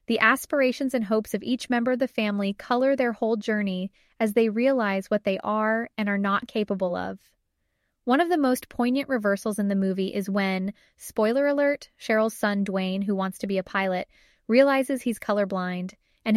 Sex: female